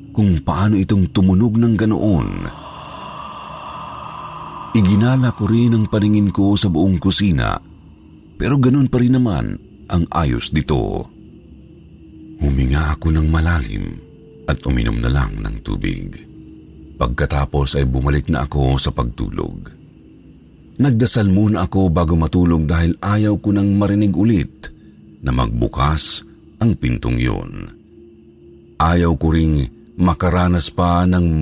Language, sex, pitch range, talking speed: Filipino, male, 75-100 Hz, 115 wpm